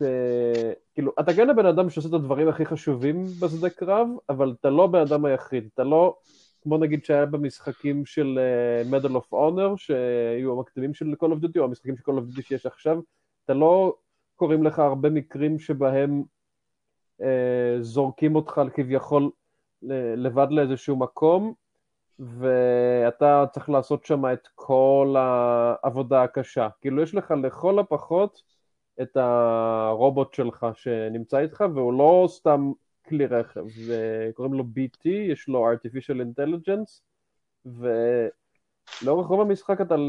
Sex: male